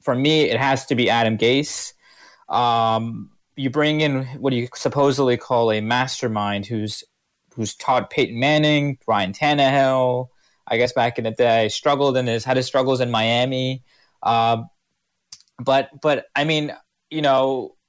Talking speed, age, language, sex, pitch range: 155 wpm, 20-39, English, male, 125-150 Hz